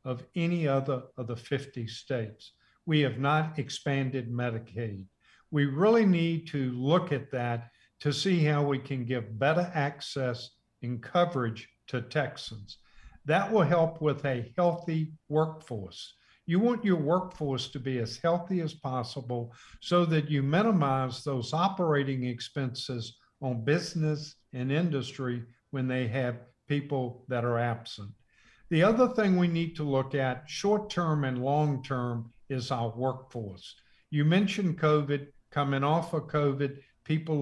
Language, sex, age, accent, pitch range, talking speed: English, male, 50-69, American, 125-160 Hz, 140 wpm